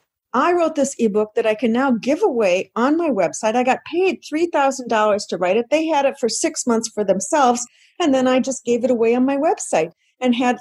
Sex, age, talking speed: female, 50-69, 225 wpm